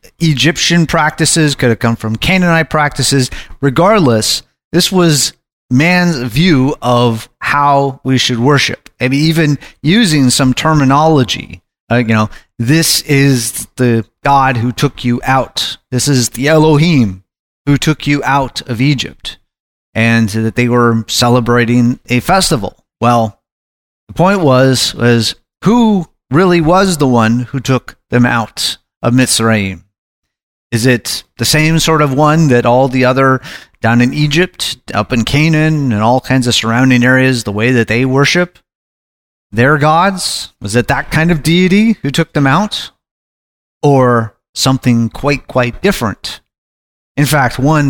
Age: 30-49